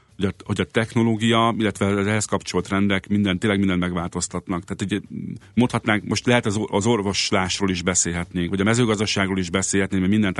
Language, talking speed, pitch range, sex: Hungarian, 165 wpm, 90-105 Hz, male